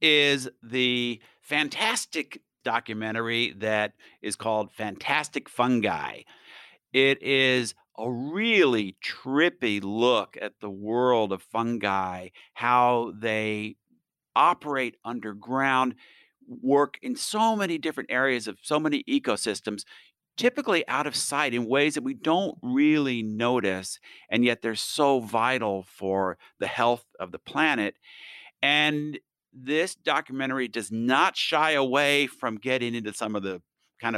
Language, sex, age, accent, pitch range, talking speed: English, male, 50-69, American, 110-140 Hz, 125 wpm